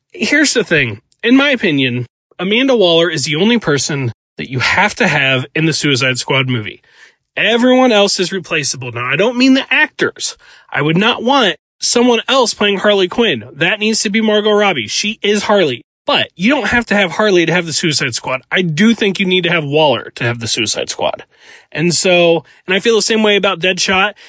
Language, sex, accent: English, male, American